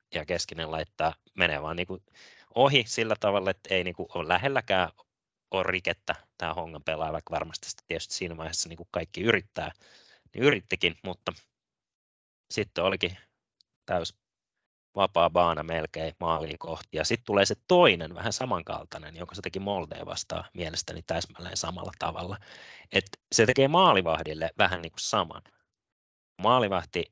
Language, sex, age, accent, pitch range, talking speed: Finnish, male, 30-49, native, 80-110 Hz, 135 wpm